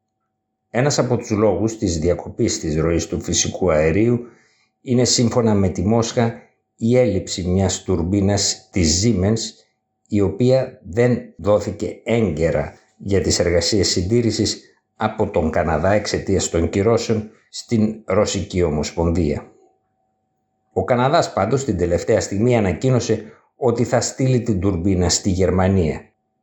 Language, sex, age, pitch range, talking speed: Greek, male, 60-79, 95-115 Hz, 125 wpm